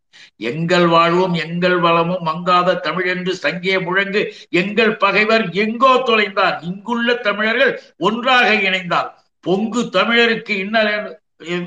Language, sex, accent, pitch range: Tamil, male, native, 170-210 Hz